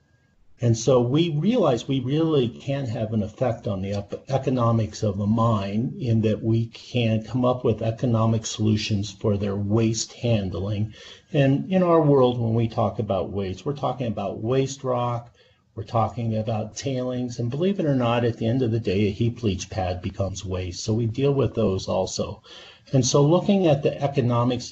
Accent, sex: American, male